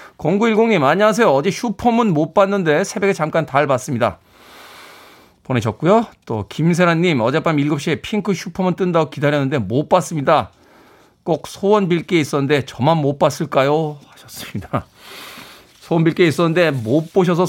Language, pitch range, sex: Korean, 130-185 Hz, male